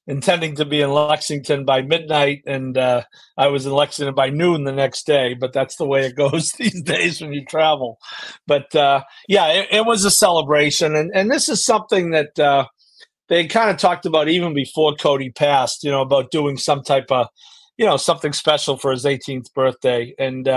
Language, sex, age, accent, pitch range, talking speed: English, male, 50-69, American, 135-160 Hz, 200 wpm